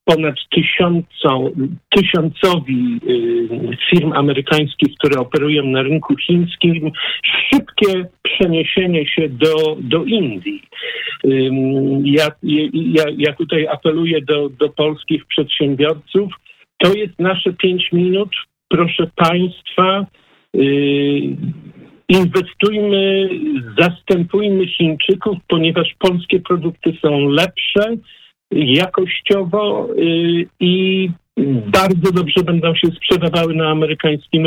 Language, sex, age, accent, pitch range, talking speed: Polish, male, 50-69, native, 150-185 Hz, 80 wpm